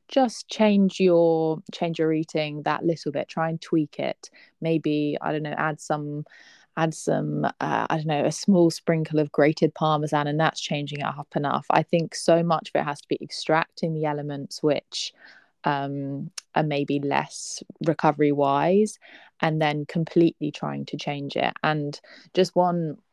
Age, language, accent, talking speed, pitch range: 20-39, English, British, 170 wpm, 145-170 Hz